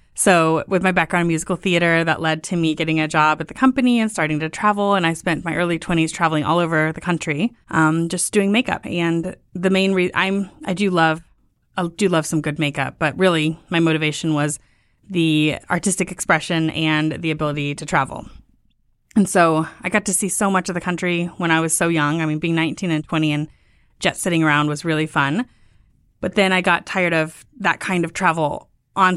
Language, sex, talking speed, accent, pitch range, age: English, female, 210 wpm, American, 155-185 Hz, 20-39